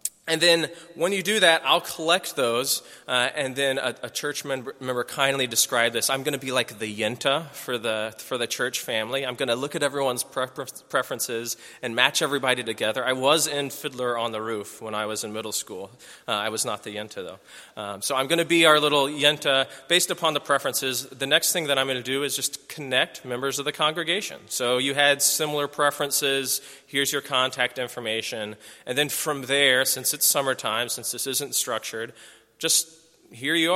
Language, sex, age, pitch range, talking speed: English, male, 20-39, 120-145 Hz, 200 wpm